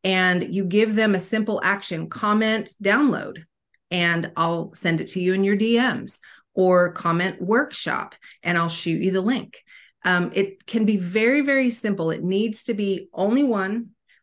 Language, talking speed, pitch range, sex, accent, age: English, 170 wpm, 180-220 Hz, female, American, 30-49